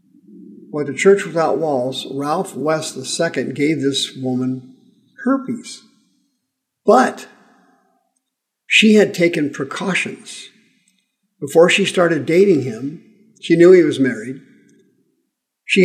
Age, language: 50-69, English